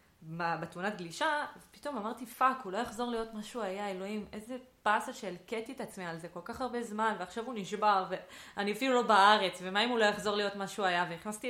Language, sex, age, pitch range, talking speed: Hebrew, female, 20-39, 175-230 Hz, 215 wpm